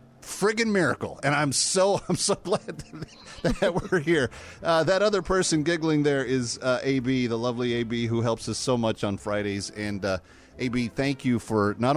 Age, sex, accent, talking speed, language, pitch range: 40-59, male, American, 200 wpm, English, 95-125 Hz